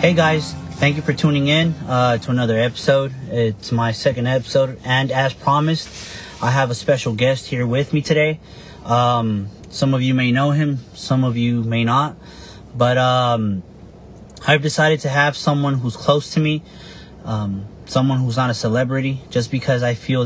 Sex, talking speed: male, 180 wpm